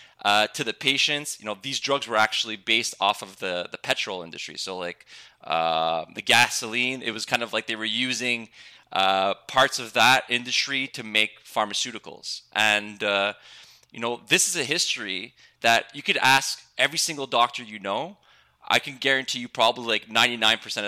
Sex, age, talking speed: male, 20-39, 180 wpm